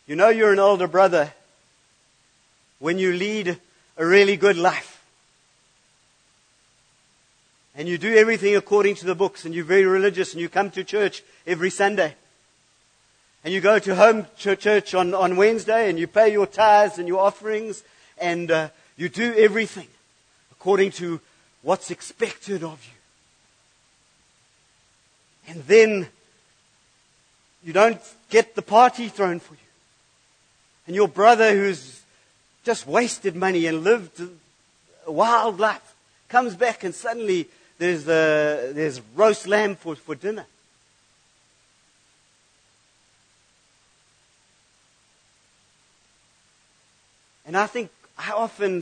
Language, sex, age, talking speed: English, male, 50-69, 120 wpm